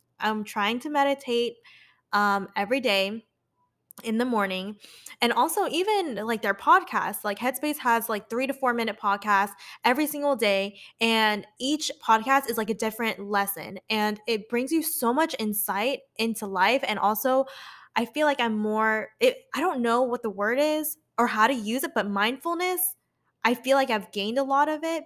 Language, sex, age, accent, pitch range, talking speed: English, female, 10-29, American, 210-275 Hz, 180 wpm